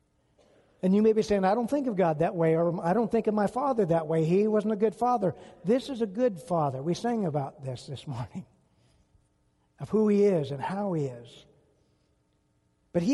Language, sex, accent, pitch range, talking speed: English, male, American, 160-200 Hz, 215 wpm